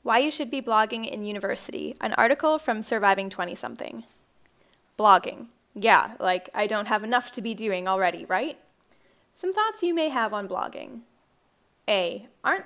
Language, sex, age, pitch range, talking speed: English, female, 10-29, 205-290 Hz, 155 wpm